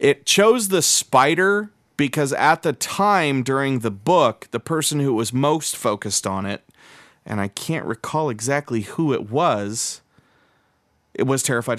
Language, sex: English, male